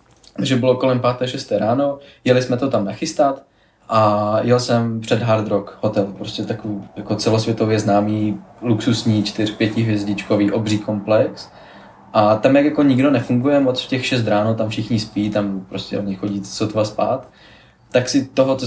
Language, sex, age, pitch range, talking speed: Czech, male, 20-39, 110-130 Hz, 170 wpm